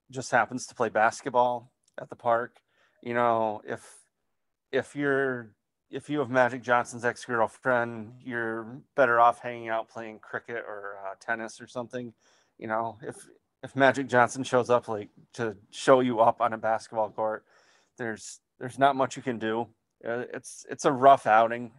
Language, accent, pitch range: English, American, 110-130 Hz